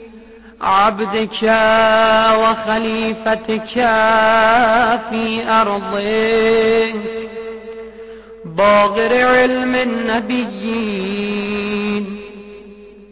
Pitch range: 195-230 Hz